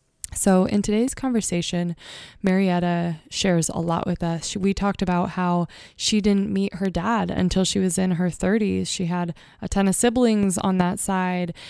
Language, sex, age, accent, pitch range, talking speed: English, female, 20-39, American, 170-200 Hz, 175 wpm